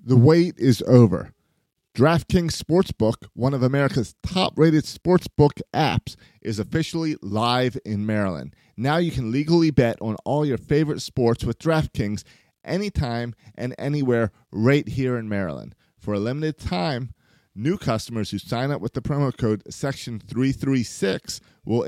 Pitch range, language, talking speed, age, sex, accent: 110-150 Hz, English, 145 wpm, 30-49, male, American